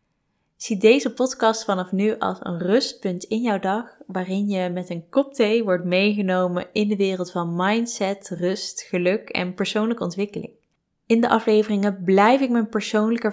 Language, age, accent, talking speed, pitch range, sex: Dutch, 20-39, Dutch, 160 wpm, 185-220 Hz, female